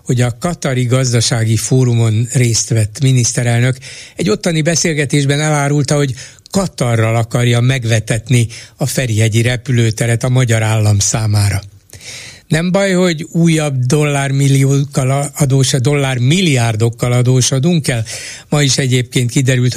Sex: male